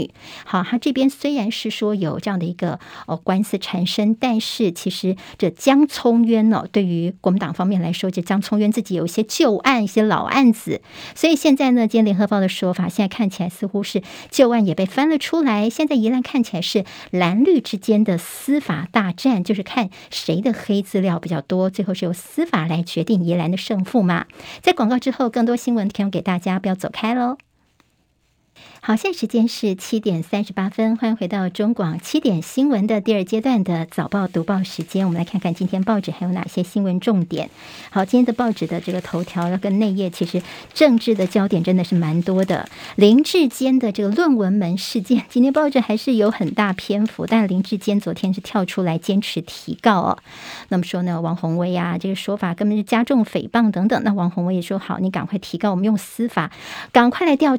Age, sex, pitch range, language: 50-69, male, 185-230 Hz, Chinese